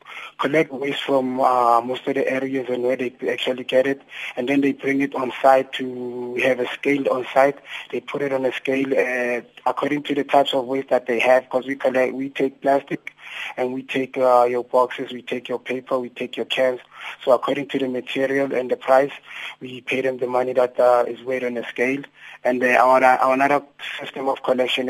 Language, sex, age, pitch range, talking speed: English, male, 20-39, 125-135 Hz, 215 wpm